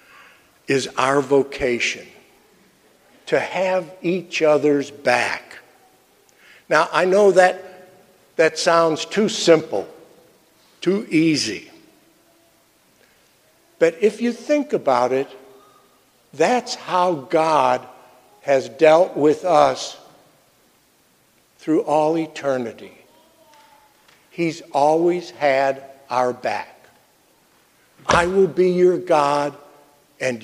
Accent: American